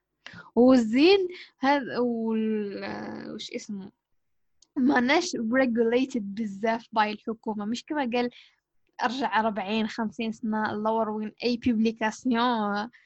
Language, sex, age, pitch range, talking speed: Arabic, female, 10-29, 220-255 Hz, 85 wpm